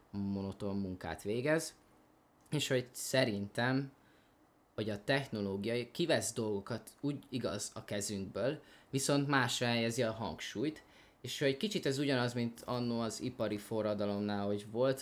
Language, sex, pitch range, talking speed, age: Hungarian, male, 105-125 Hz, 130 wpm, 20-39